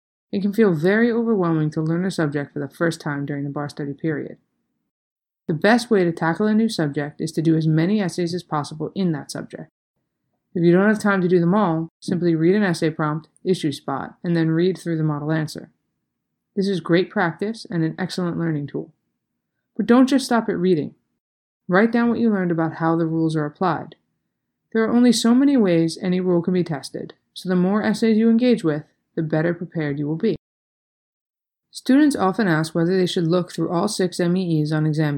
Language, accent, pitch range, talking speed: English, American, 160-205 Hz, 210 wpm